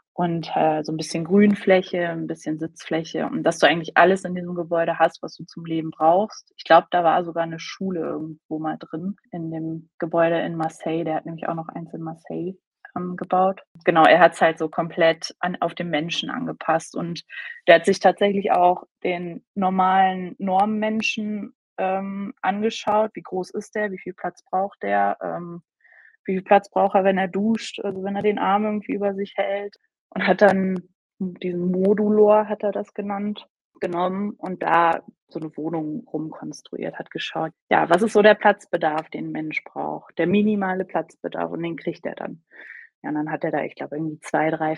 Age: 20-39